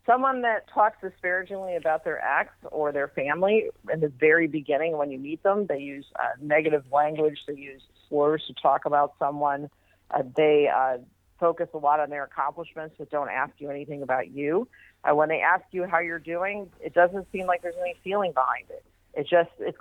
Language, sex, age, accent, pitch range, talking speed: English, female, 50-69, American, 140-175 Hz, 195 wpm